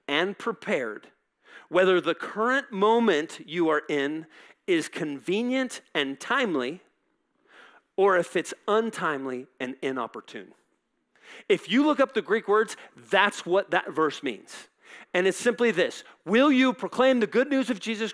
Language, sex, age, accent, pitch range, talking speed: English, male, 40-59, American, 155-225 Hz, 140 wpm